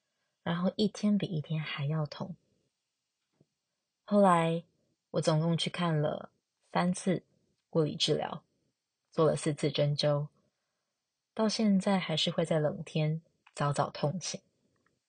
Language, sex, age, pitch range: Chinese, female, 20-39, 150-185 Hz